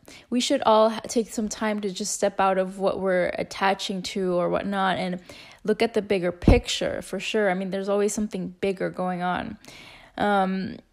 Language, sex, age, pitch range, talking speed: English, female, 10-29, 200-245 Hz, 185 wpm